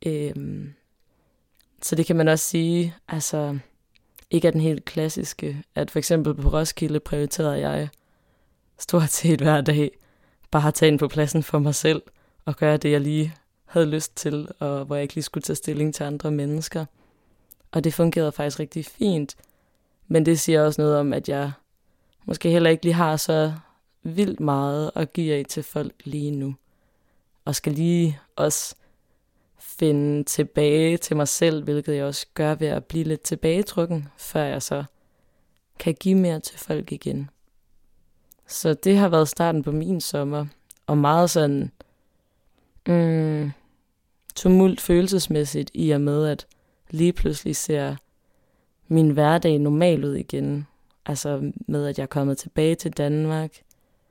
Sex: female